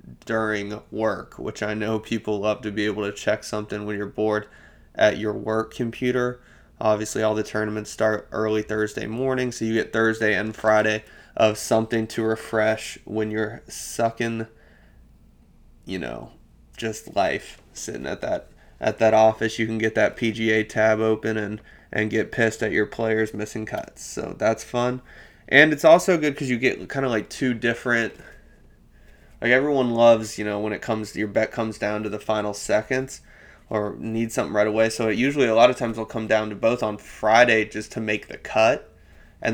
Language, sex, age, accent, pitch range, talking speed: English, male, 20-39, American, 105-115 Hz, 190 wpm